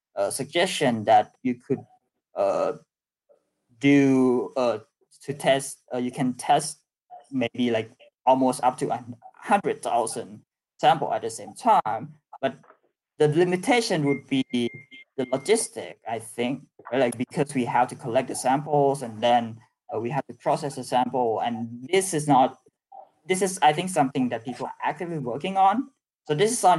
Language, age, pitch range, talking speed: Hindi, 20-39, 125-175 Hz, 160 wpm